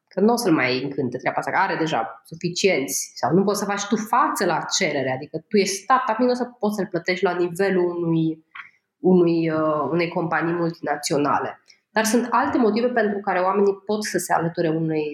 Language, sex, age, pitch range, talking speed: Romanian, female, 20-39, 175-215 Hz, 205 wpm